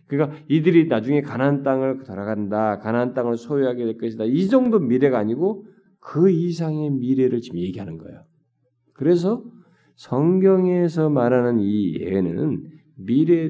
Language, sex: Korean, male